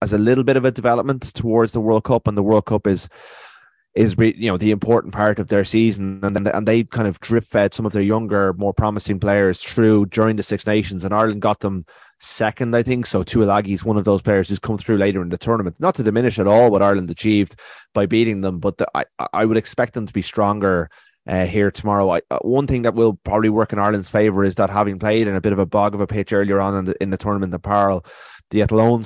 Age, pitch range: 20-39, 100-110 Hz